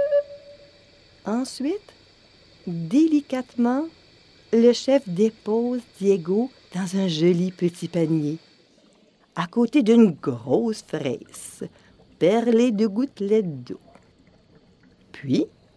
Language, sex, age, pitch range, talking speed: French, female, 50-69, 200-295 Hz, 80 wpm